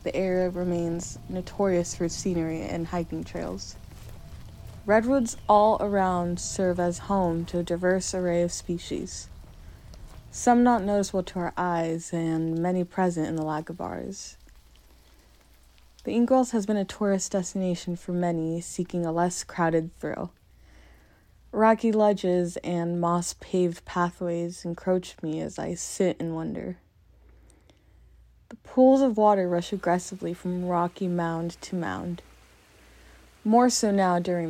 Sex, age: female, 20-39